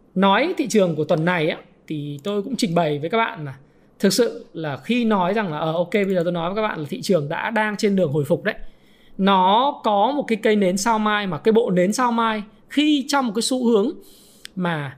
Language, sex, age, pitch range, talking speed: Vietnamese, male, 20-39, 180-225 Hz, 250 wpm